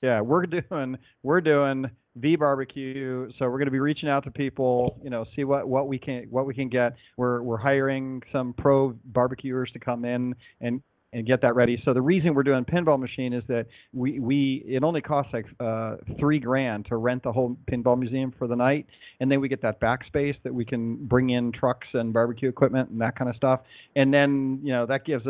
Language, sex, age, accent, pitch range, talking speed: English, male, 40-59, American, 120-140 Hz, 220 wpm